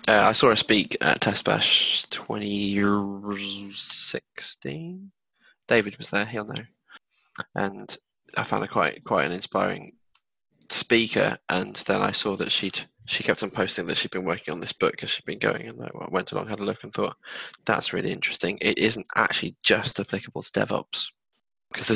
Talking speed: 185 wpm